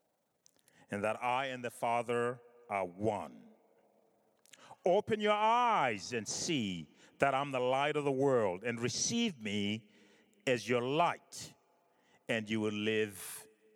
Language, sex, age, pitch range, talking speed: English, male, 60-79, 95-135 Hz, 130 wpm